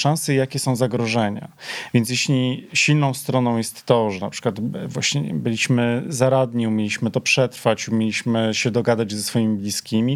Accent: native